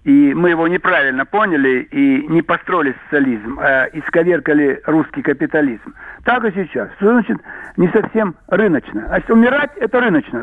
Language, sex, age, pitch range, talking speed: Russian, male, 60-79, 175-255 Hz, 150 wpm